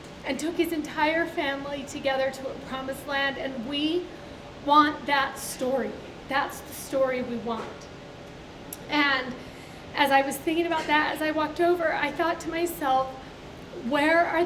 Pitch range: 245-295 Hz